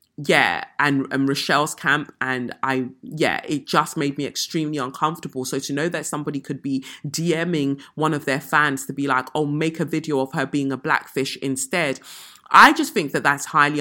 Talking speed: 195 wpm